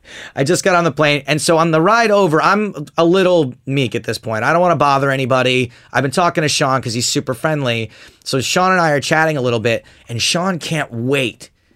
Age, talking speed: 30-49, 240 wpm